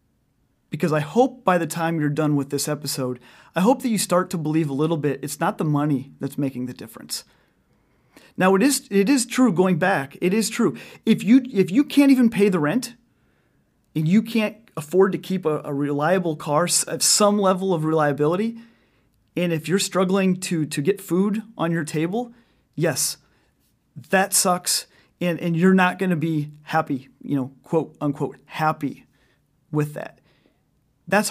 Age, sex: 30-49, male